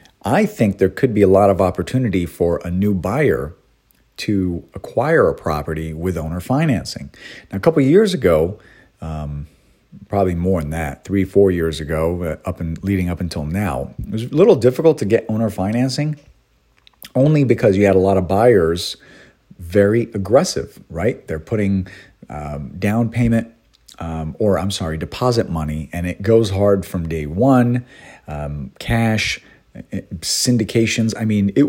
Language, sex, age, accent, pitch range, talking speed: English, male, 40-59, American, 85-115 Hz, 165 wpm